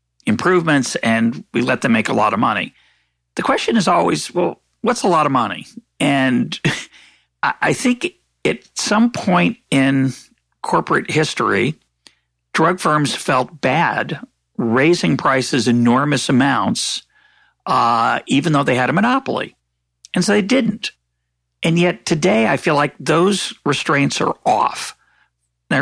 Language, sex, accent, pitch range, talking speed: English, male, American, 115-170 Hz, 135 wpm